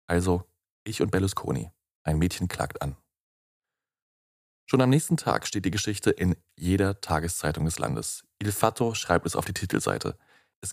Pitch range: 90-115 Hz